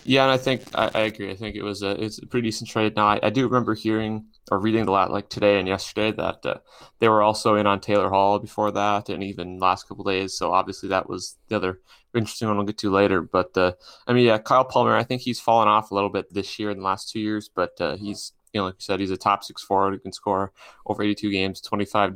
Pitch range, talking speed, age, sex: 95-105 Hz, 280 wpm, 20-39, male